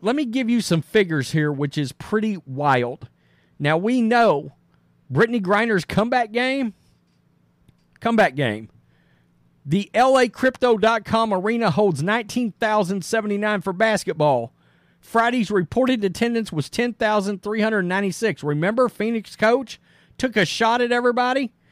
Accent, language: American, English